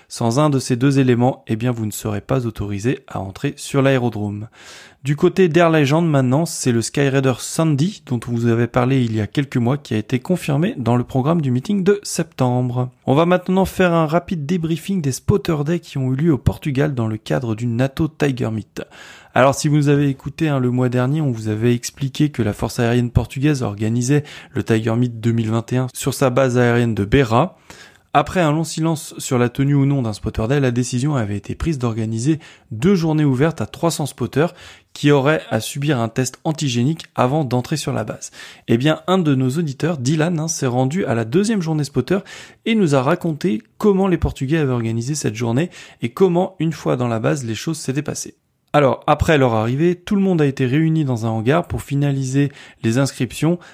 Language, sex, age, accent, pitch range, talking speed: French, male, 20-39, French, 120-160 Hz, 210 wpm